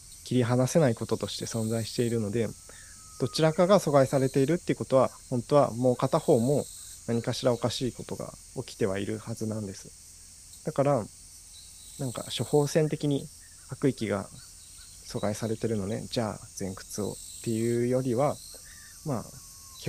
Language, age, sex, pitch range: Japanese, 20-39, male, 105-140 Hz